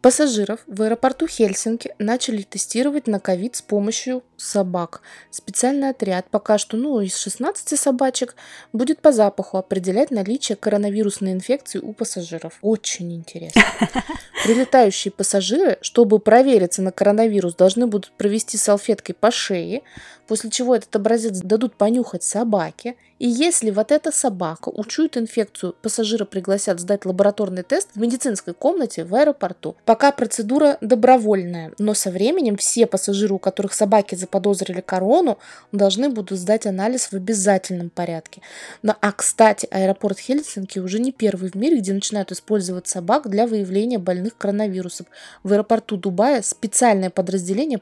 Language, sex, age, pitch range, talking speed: Russian, female, 20-39, 195-240 Hz, 135 wpm